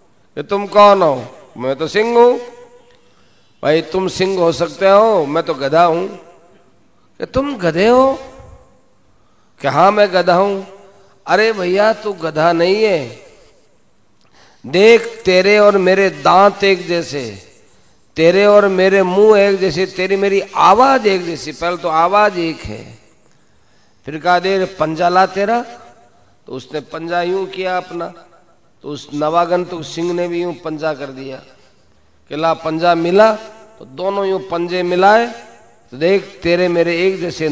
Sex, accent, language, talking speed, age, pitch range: male, native, Hindi, 140 wpm, 50-69, 160-200 Hz